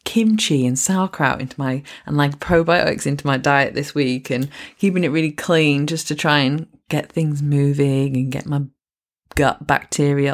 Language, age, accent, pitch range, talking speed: English, 20-39, British, 140-180 Hz, 175 wpm